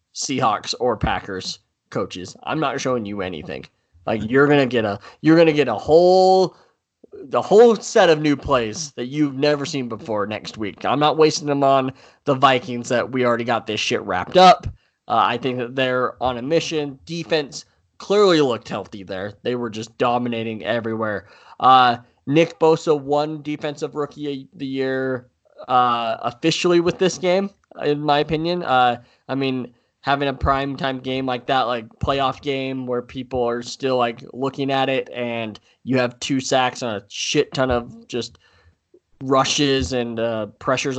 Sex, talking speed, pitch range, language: male, 175 wpm, 120-150 Hz, English